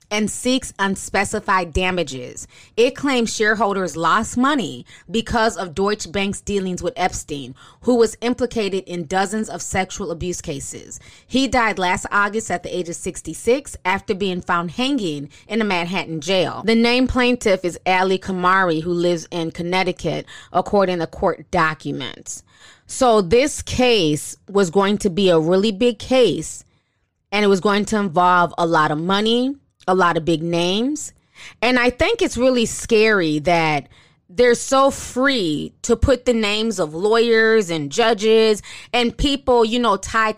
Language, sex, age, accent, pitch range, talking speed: English, female, 20-39, American, 185-240 Hz, 155 wpm